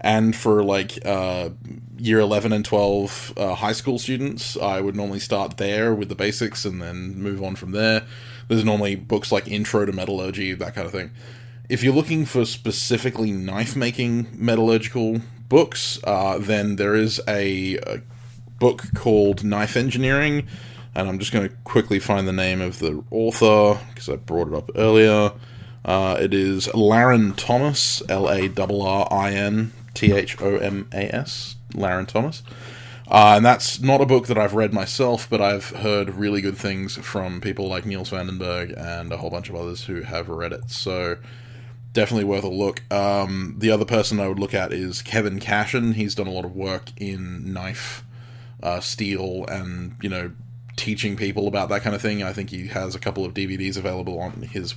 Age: 20-39